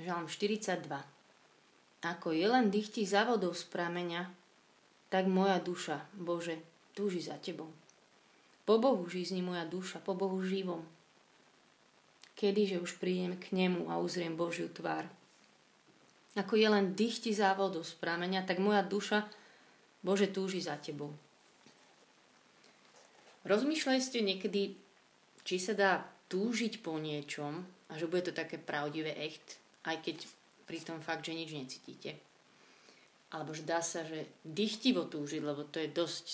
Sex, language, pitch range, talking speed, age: female, Slovak, 160-190 Hz, 130 wpm, 30-49